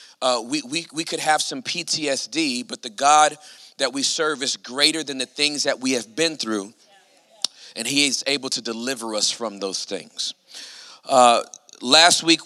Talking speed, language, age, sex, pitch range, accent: 180 wpm, English, 40-59, male, 135-165 Hz, American